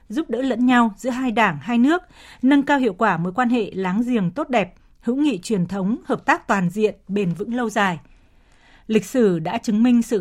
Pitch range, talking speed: 205-260 Hz, 225 wpm